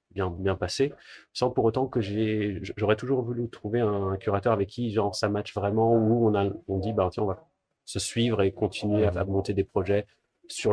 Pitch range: 95-115 Hz